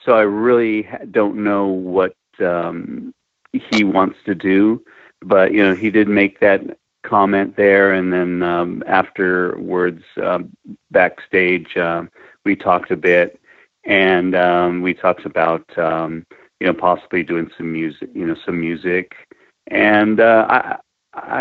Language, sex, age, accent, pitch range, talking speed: English, male, 40-59, American, 85-100 Hz, 135 wpm